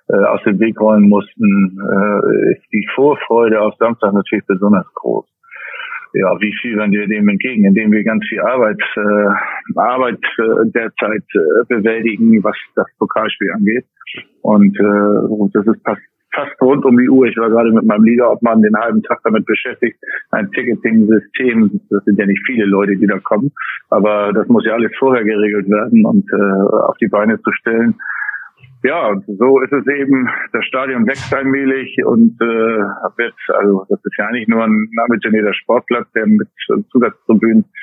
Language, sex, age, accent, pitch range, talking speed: German, male, 50-69, German, 105-125 Hz, 165 wpm